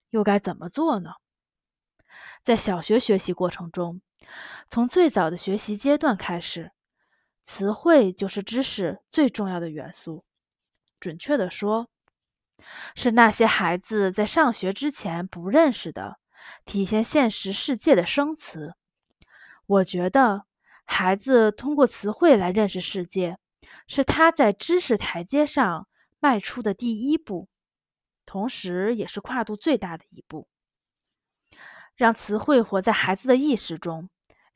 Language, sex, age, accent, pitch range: Chinese, female, 20-39, native, 185-255 Hz